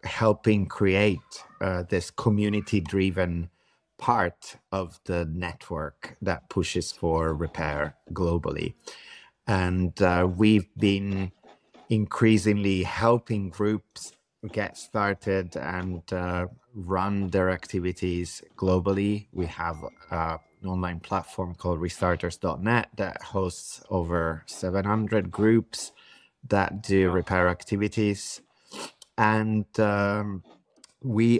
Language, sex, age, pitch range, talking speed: English, male, 30-49, 85-100 Hz, 90 wpm